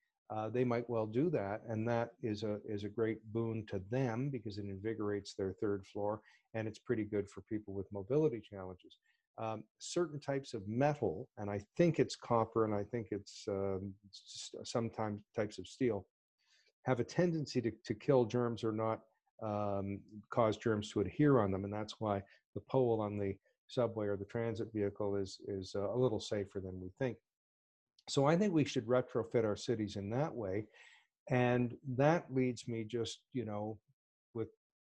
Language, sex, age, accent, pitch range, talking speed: English, male, 40-59, American, 105-130 Hz, 180 wpm